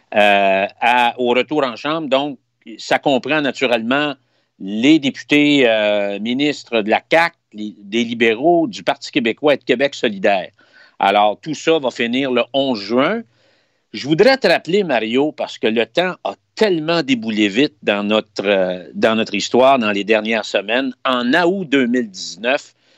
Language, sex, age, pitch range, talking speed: French, male, 50-69, 115-160 Hz, 150 wpm